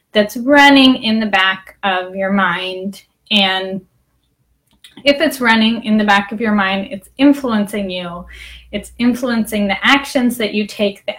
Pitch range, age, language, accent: 195-230 Hz, 10-29, English, American